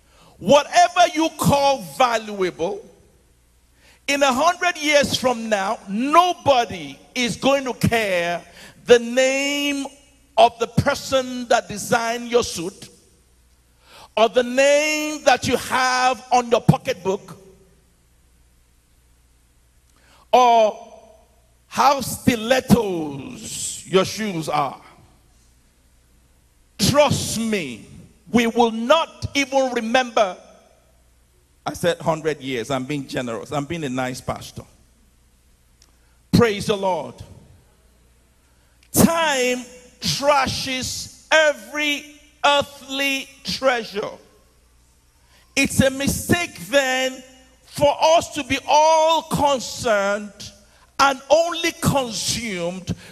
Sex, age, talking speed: male, 50-69, 90 wpm